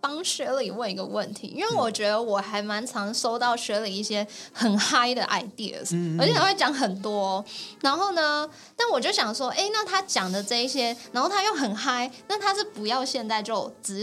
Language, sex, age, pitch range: Chinese, female, 10-29, 205-275 Hz